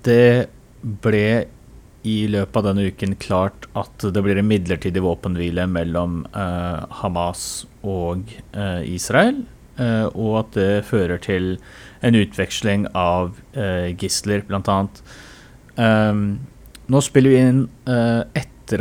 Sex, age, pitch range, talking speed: male, 30-49, 95-115 Hz, 115 wpm